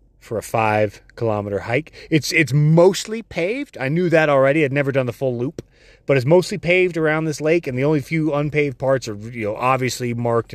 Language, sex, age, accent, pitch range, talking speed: English, male, 30-49, American, 110-150 Hz, 205 wpm